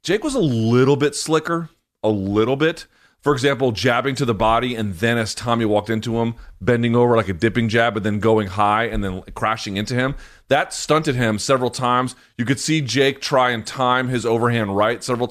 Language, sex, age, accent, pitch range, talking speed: English, male, 30-49, American, 110-135 Hz, 210 wpm